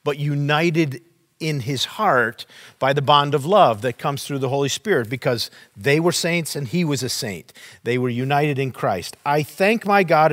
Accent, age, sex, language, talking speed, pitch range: American, 50-69, male, English, 200 wpm, 130-165 Hz